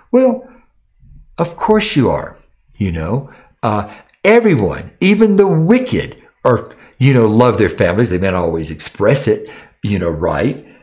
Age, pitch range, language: 60-79, 115-160 Hz, English